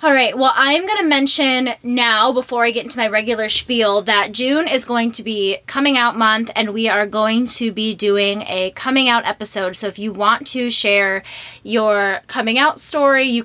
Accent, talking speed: American, 205 wpm